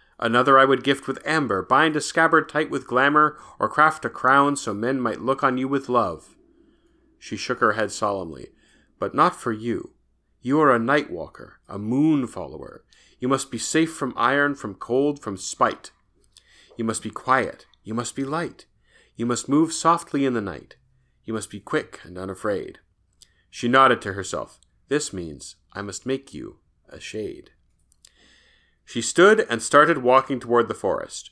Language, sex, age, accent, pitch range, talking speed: English, male, 40-59, American, 115-155 Hz, 170 wpm